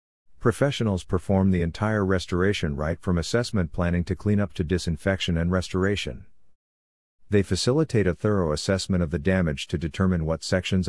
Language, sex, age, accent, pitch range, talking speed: English, male, 50-69, American, 85-100 Hz, 155 wpm